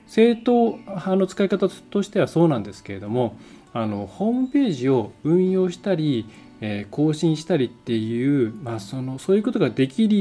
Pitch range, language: 115-175 Hz, Japanese